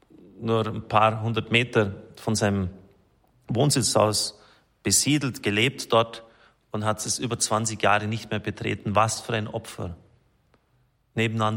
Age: 30-49